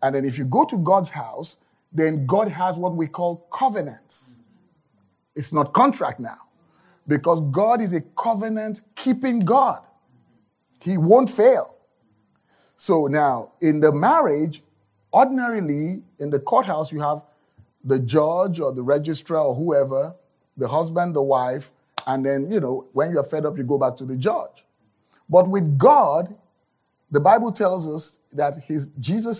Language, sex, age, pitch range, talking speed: English, male, 30-49, 135-195 Hz, 150 wpm